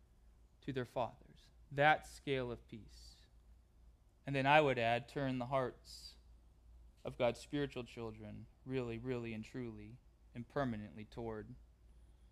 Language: English